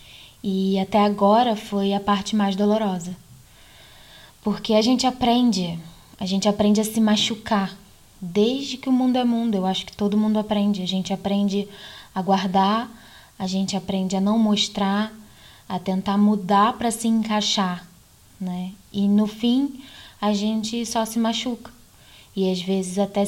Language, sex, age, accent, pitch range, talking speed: Portuguese, female, 10-29, Brazilian, 190-220 Hz, 155 wpm